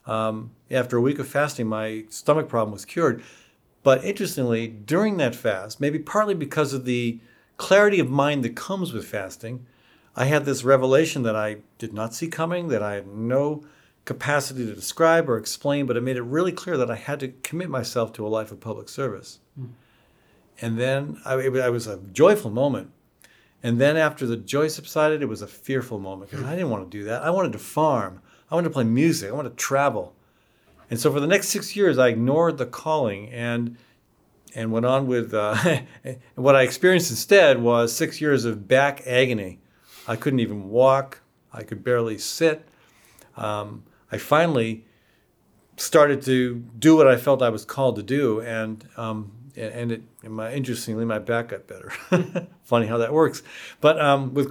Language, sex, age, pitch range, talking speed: English, male, 50-69, 115-145 Hz, 190 wpm